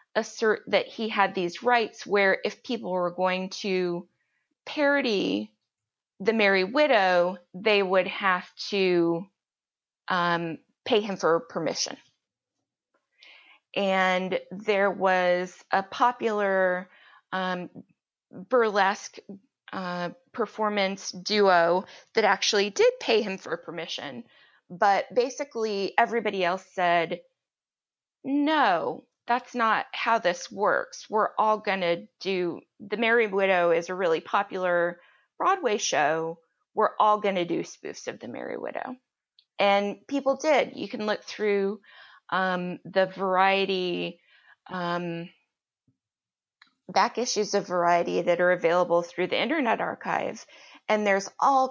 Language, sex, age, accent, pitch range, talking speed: English, female, 20-39, American, 180-220 Hz, 120 wpm